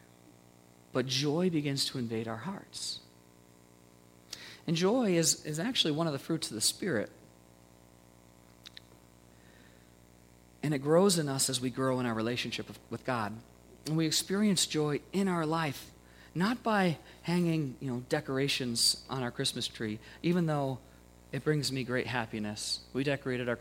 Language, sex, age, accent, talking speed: English, male, 40-59, American, 145 wpm